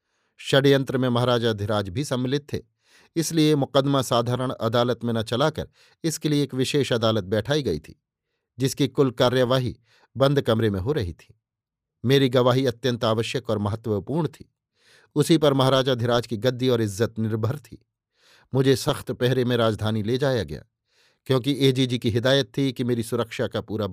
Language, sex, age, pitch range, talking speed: Hindi, male, 50-69, 115-140 Hz, 165 wpm